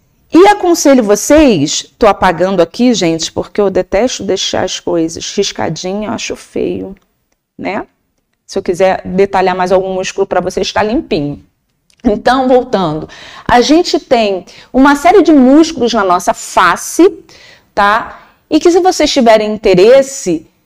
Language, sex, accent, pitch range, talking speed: Portuguese, female, Brazilian, 200-305 Hz, 140 wpm